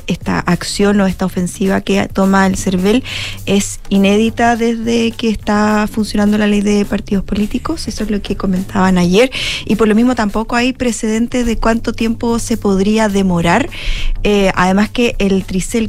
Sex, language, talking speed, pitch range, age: female, Spanish, 165 wpm, 190-225 Hz, 20-39